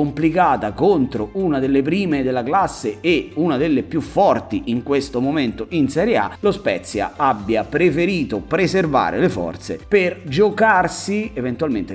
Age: 30-49